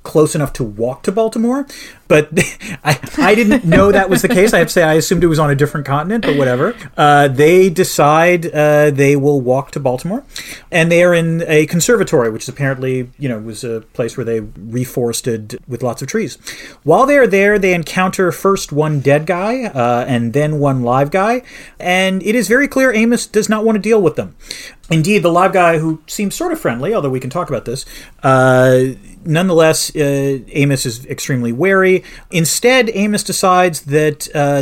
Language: English